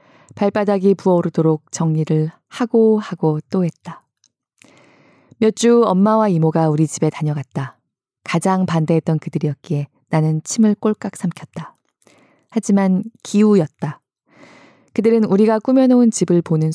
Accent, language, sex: native, Korean, female